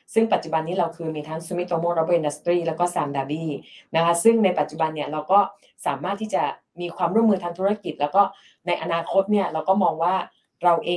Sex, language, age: female, Thai, 20-39